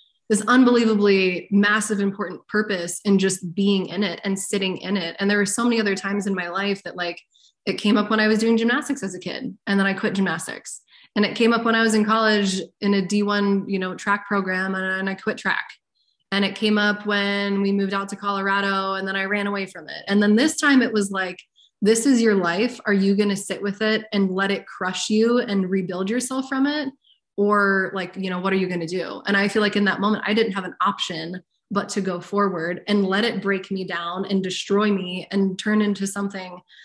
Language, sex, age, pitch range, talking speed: English, female, 20-39, 190-215 Hz, 240 wpm